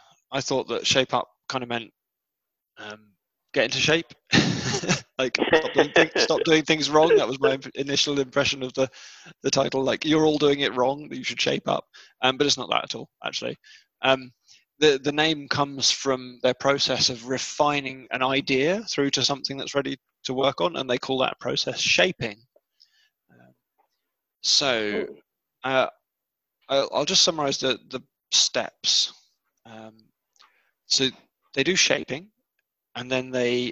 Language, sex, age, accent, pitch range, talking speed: English, male, 20-39, British, 120-140 Hz, 160 wpm